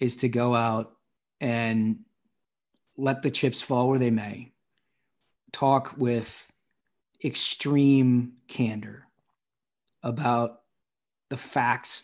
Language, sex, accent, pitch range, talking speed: English, male, American, 115-130 Hz, 95 wpm